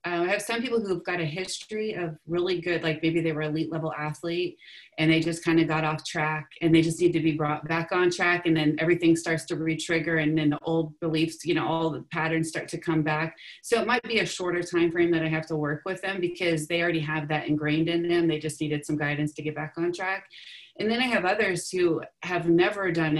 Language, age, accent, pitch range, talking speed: English, 30-49, American, 155-170 Hz, 255 wpm